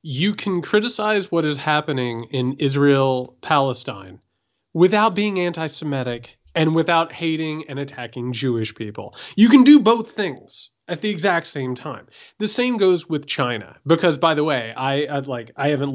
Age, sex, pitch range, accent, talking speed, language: 30-49, male, 125-180 Hz, American, 155 wpm, English